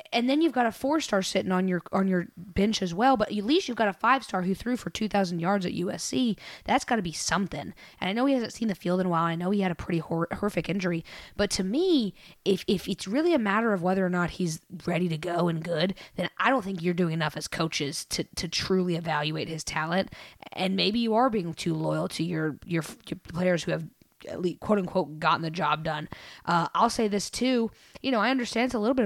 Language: English